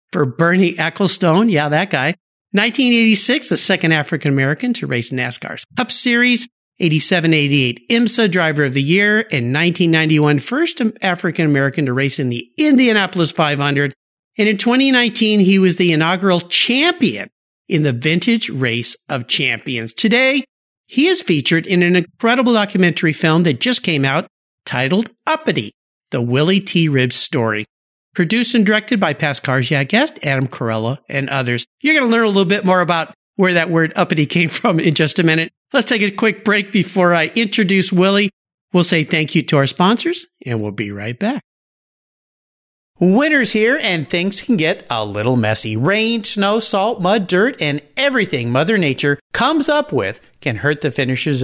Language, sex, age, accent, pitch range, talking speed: English, male, 50-69, American, 145-220 Hz, 165 wpm